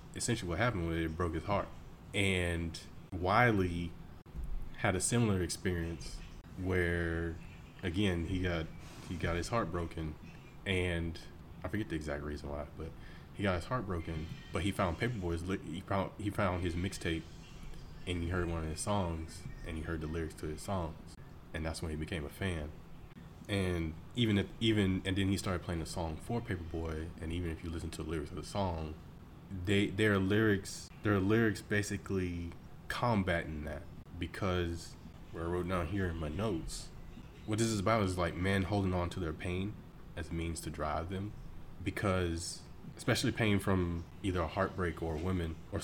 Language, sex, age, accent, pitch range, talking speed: English, male, 20-39, American, 85-95 Hz, 180 wpm